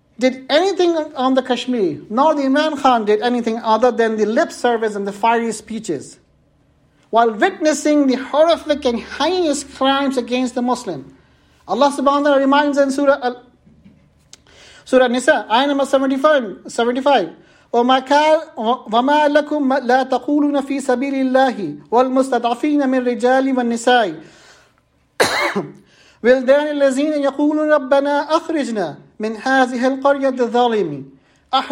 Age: 50-69